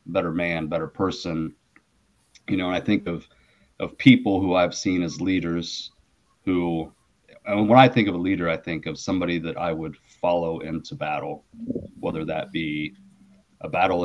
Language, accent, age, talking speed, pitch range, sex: English, American, 30-49, 170 wpm, 85-105 Hz, male